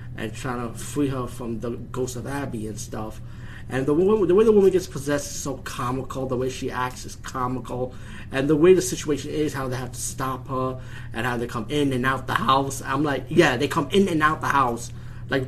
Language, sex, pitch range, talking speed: English, male, 120-150 Hz, 235 wpm